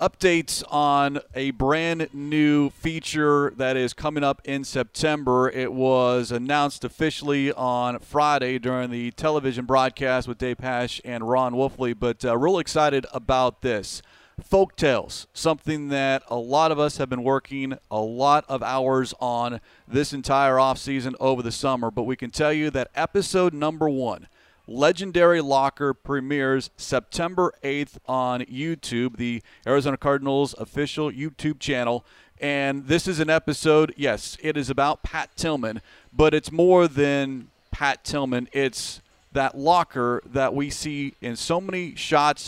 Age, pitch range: 40-59, 130-155 Hz